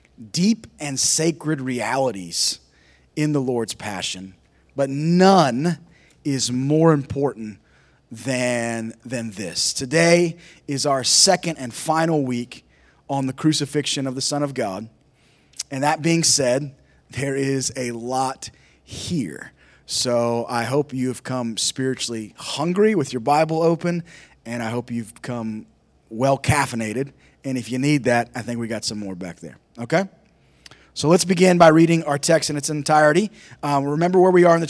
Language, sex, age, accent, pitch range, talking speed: English, male, 30-49, American, 120-155 Hz, 155 wpm